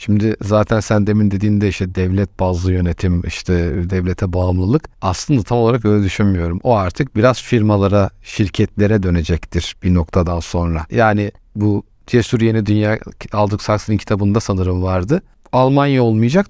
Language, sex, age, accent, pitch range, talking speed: Turkish, male, 50-69, native, 95-125 Hz, 140 wpm